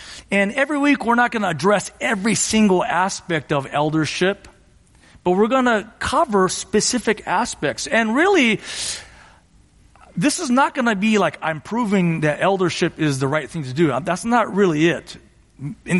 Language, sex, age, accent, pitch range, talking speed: English, male, 40-59, American, 155-205 Hz, 165 wpm